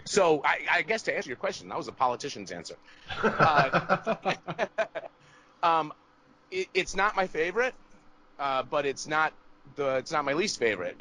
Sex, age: male, 30-49